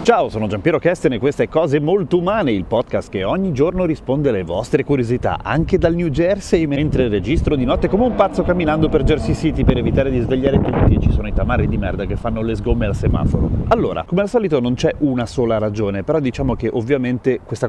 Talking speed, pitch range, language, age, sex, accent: 220 wpm, 100-135 Hz, Italian, 30-49, male, native